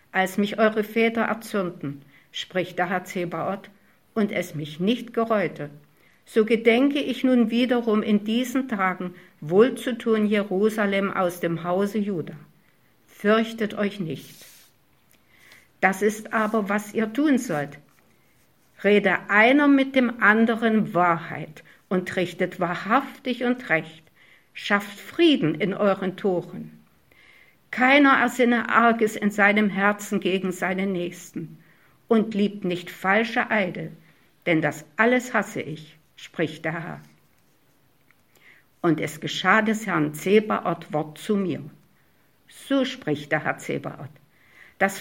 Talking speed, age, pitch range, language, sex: 120 wpm, 60-79, 170-225 Hz, German, female